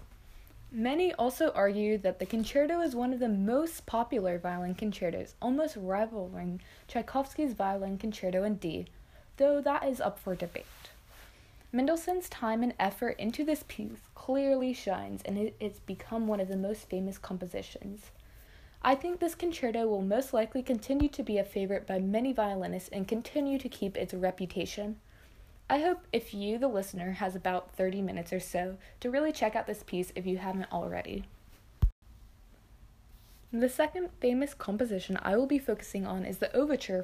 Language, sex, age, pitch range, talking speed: English, female, 20-39, 185-255 Hz, 165 wpm